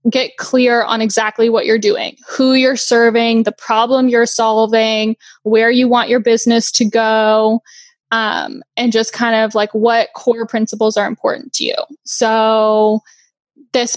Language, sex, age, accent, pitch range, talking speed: English, female, 10-29, American, 220-240 Hz, 155 wpm